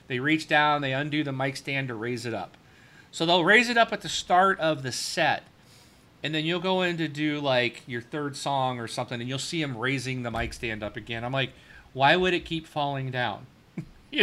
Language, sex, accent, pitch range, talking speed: English, male, American, 145-195 Hz, 230 wpm